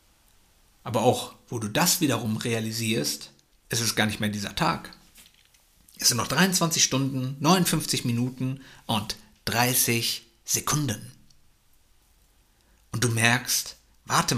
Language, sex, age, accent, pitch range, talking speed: German, male, 60-79, German, 110-165 Hz, 115 wpm